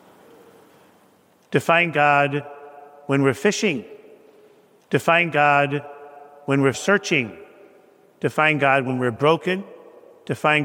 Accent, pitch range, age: American, 145-180 Hz, 50-69